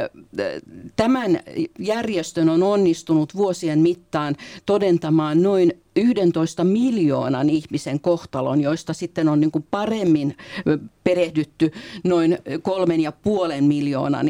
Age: 50-69